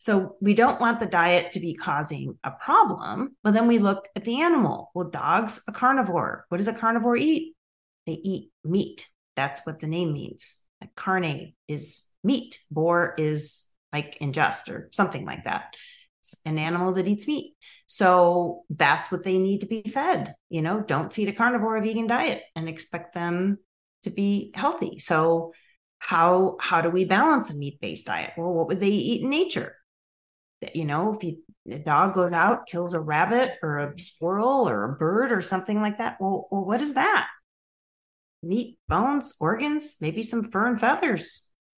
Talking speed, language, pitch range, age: 180 wpm, English, 165-225 Hz, 40-59